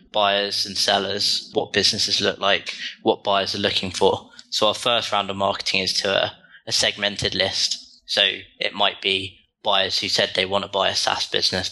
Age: 10-29